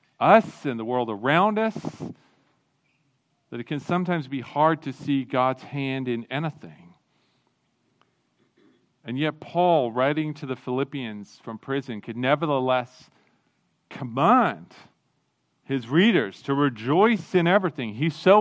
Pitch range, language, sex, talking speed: 125-165 Hz, English, male, 125 wpm